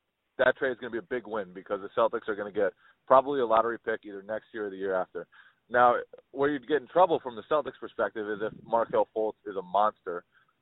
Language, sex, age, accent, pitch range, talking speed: English, male, 30-49, American, 110-140 Hz, 250 wpm